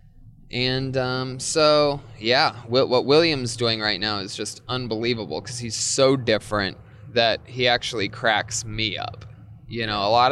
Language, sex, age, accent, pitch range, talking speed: English, male, 20-39, American, 110-130 Hz, 150 wpm